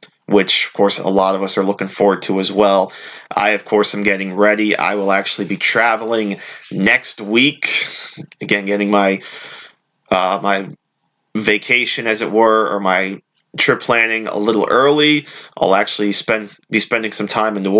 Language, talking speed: English, 170 wpm